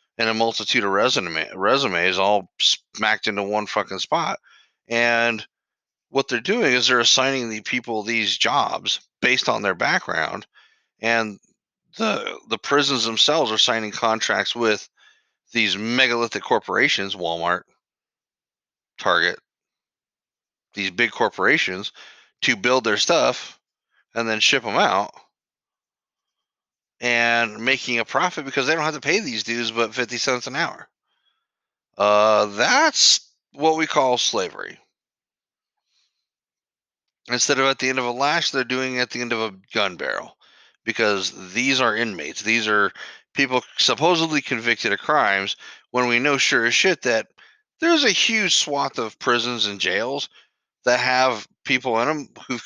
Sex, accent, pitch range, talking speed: male, American, 110-135 Hz, 140 wpm